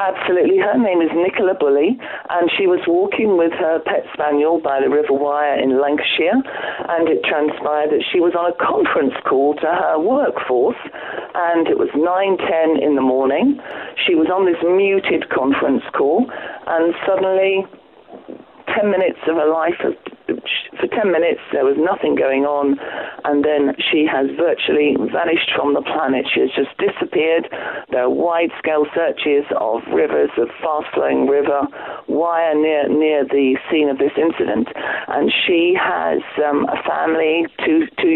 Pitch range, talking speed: 145-195 Hz, 165 wpm